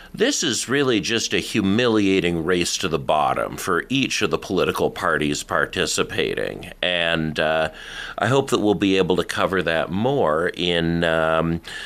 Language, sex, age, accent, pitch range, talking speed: English, male, 50-69, American, 80-100 Hz, 155 wpm